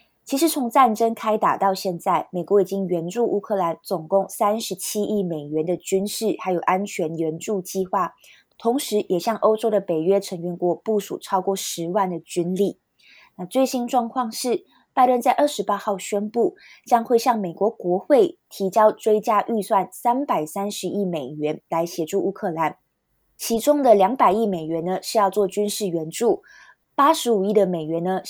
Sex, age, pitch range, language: female, 20-39, 180-220 Hz, Chinese